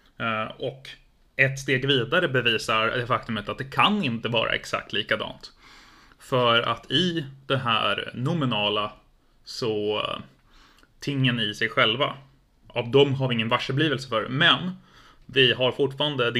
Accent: native